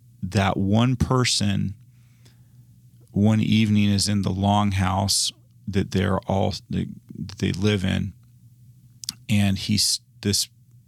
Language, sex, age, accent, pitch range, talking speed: English, male, 30-49, American, 100-120 Hz, 100 wpm